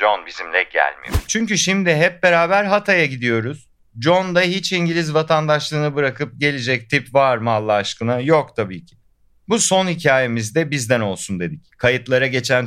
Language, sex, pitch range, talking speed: Turkish, male, 105-150 Hz, 150 wpm